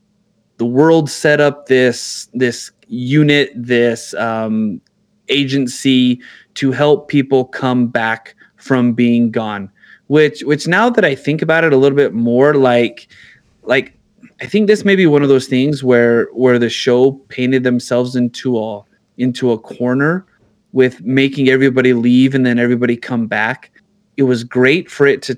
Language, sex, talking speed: English, male, 160 wpm